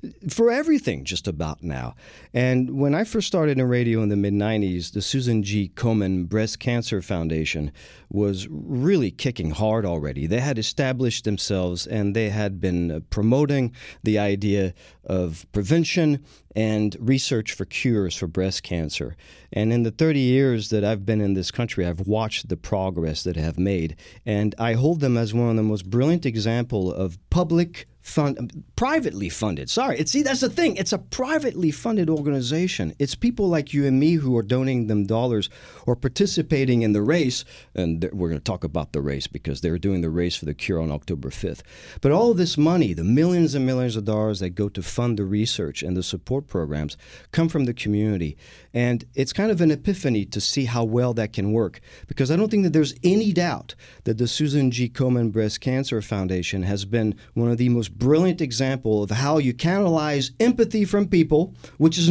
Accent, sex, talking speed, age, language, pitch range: American, male, 190 wpm, 40-59, English, 95-145 Hz